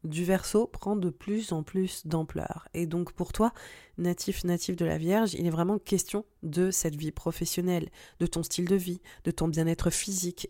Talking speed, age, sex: 195 wpm, 20-39, female